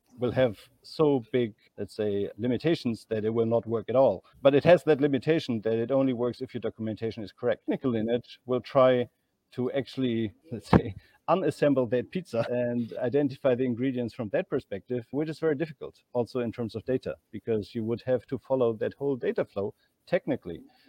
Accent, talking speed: German, 195 wpm